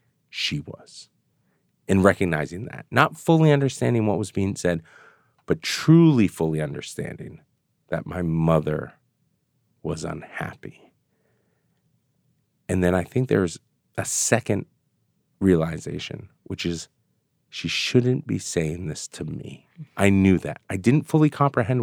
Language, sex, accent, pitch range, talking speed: English, male, American, 85-120 Hz, 125 wpm